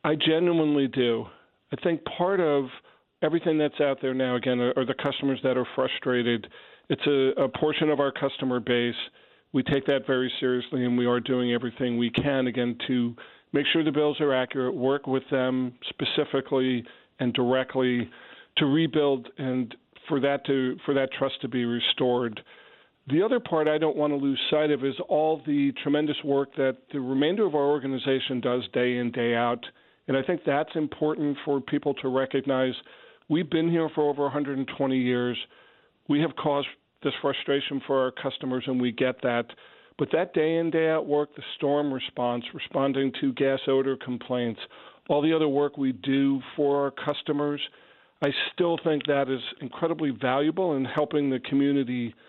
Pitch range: 130-150 Hz